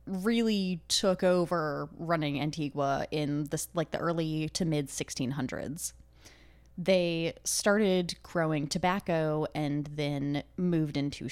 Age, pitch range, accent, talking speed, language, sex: 20-39, 140-165 Hz, American, 115 wpm, English, female